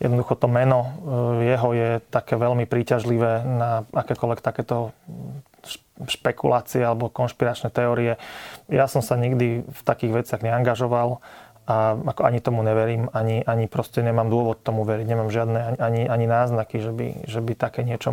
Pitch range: 115-125 Hz